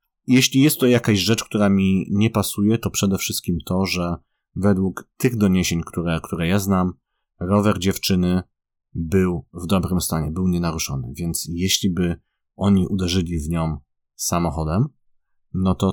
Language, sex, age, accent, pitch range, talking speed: Polish, male, 30-49, native, 85-100 Hz, 145 wpm